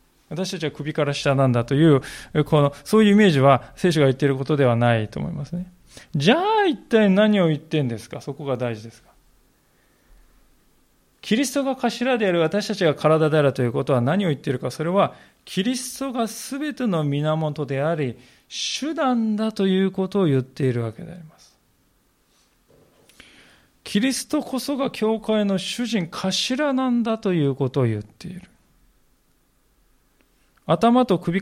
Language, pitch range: Japanese, 140-215 Hz